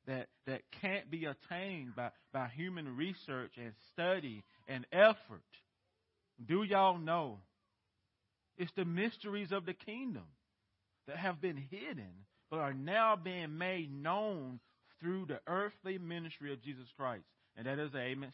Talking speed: 145 wpm